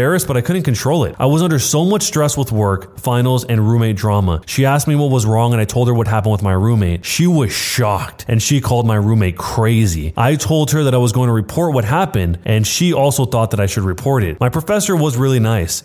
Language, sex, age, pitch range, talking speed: English, male, 20-39, 110-140 Hz, 250 wpm